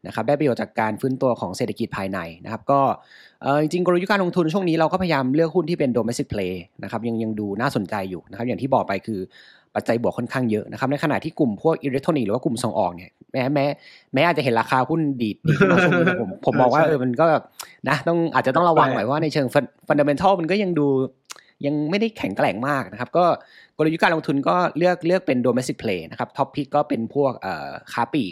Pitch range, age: 115-155 Hz, 30-49